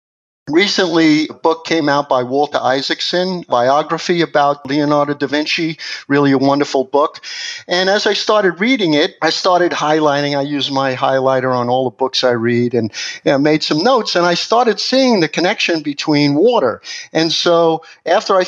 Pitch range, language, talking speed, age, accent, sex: 140-185 Hz, English, 175 wpm, 50-69, American, male